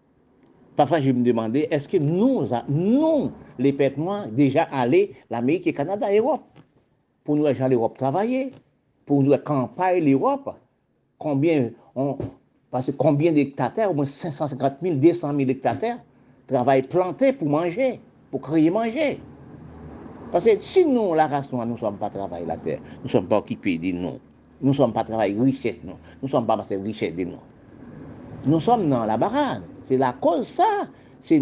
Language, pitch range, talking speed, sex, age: French, 120-195 Hz, 175 wpm, male, 50-69